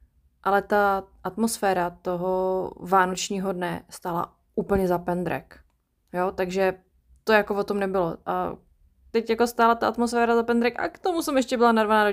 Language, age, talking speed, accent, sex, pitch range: Czech, 20-39, 160 wpm, native, female, 180-205 Hz